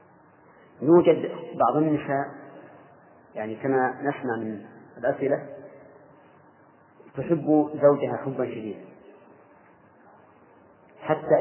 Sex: male